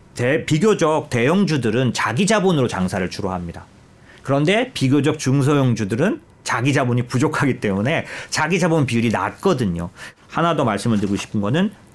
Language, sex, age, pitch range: Korean, male, 40-59, 105-155 Hz